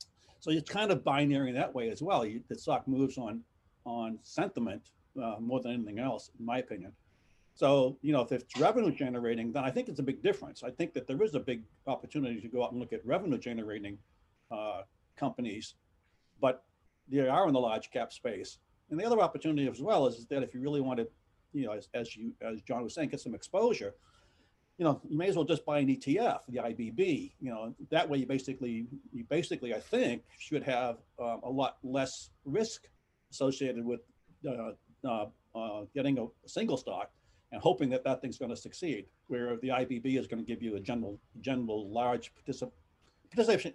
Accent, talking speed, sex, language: American, 205 wpm, male, English